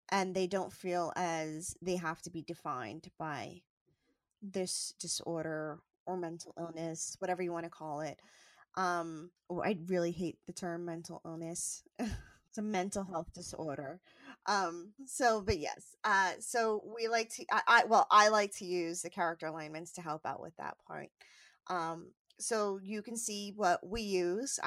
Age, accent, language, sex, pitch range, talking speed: 20-39, American, English, female, 175-215 Hz, 160 wpm